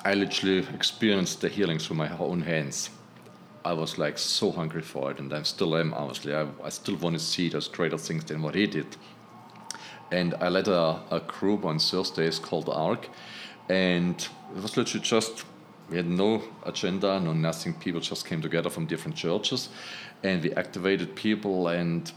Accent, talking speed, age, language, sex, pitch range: German, 185 wpm, 40-59, English, male, 80-95 Hz